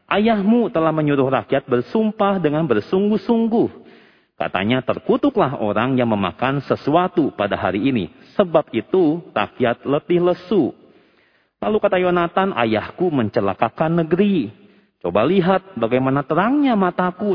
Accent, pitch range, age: native, 120-195 Hz, 40-59